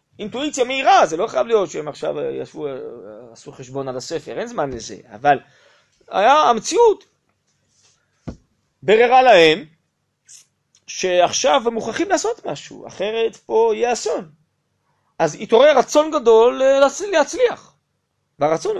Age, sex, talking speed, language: 30-49, male, 115 wpm, Hebrew